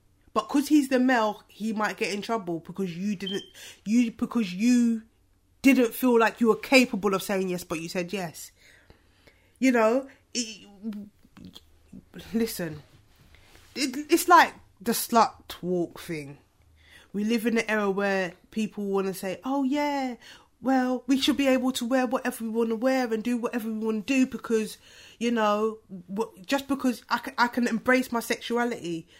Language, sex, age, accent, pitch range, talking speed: English, female, 20-39, British, 195-250 Hz, 170 wpm